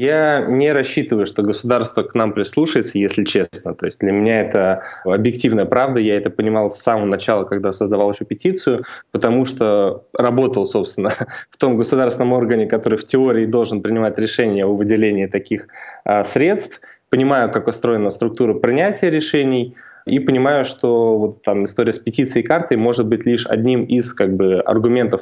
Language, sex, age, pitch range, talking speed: Russian, male, 20-39, 110-130 Hz, 165 wpm